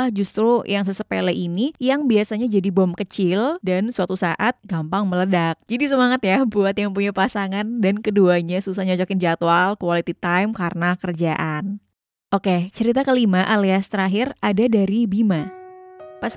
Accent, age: native, 20-39